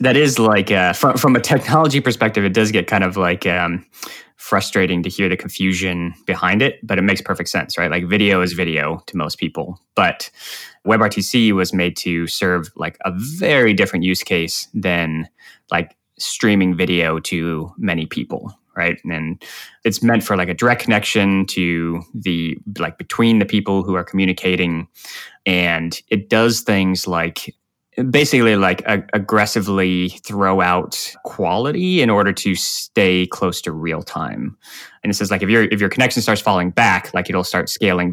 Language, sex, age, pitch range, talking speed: English, male, 20-39, 85-105 Hz, 170 wpm